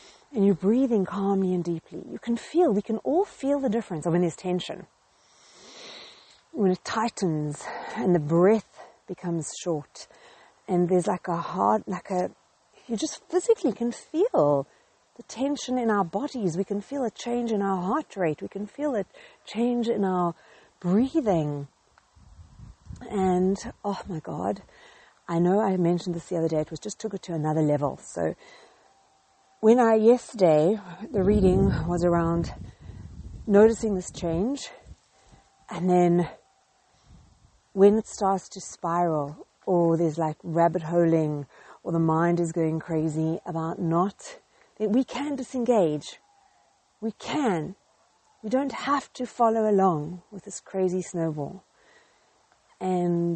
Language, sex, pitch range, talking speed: English, female, 170-225 Hz, 145 wpm